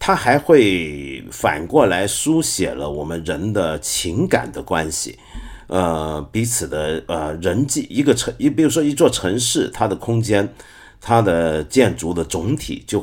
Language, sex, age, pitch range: Chinese, male, 50-69, 90-140 Hz